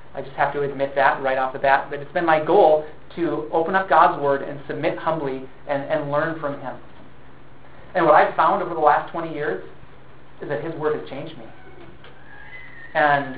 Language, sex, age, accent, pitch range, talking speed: English, male, 40-59, American, 140-165 Hz, 200 wpm